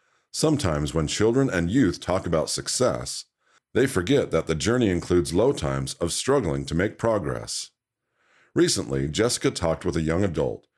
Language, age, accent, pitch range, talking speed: English, 50-69, American, 80-115 Hz, 155 wpm